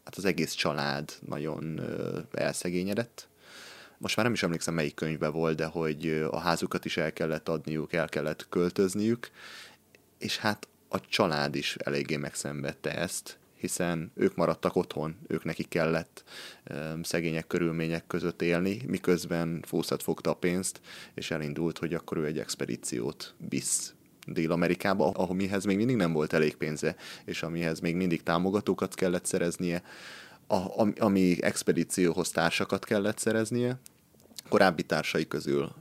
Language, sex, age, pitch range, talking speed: Hungarian, male, 30-49, 80-95 Hz, 140 wpm